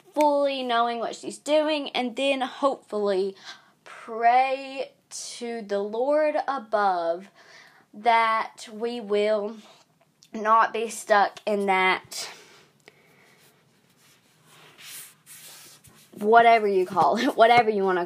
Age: 20-39